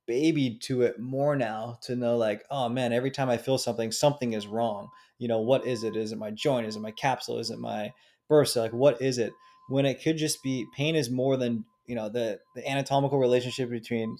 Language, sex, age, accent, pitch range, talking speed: English, male, 20-39, American, 115-130 Hz, 235 wpm